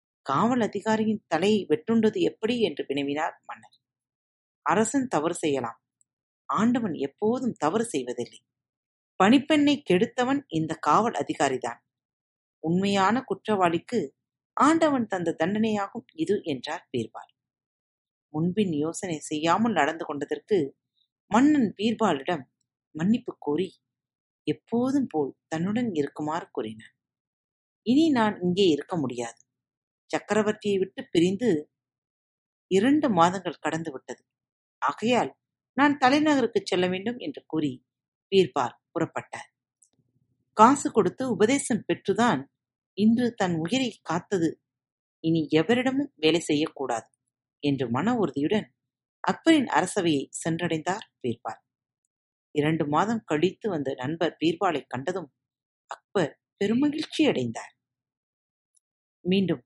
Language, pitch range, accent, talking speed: Tamil, 150-230 Hz, native, 95 wpm